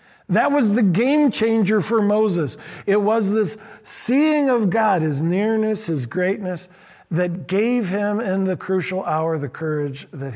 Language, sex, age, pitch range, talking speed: English, male, 50-69, 150-210 Hz, 155 wpm